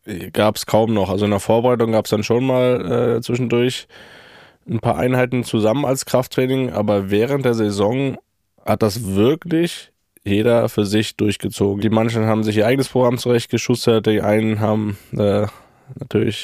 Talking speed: 165 wpm